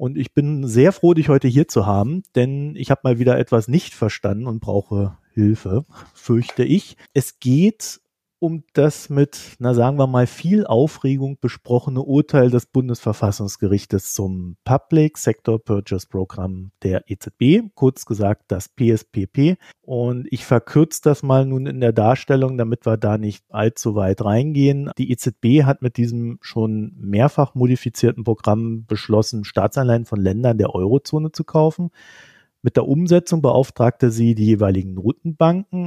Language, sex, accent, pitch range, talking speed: German, male, German, 105-135 Hz, 150 wpm